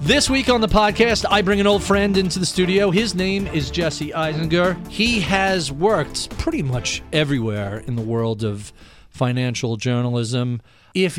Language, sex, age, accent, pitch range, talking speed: English, male, 40-59, American, 115-155 Hz, 165 wpm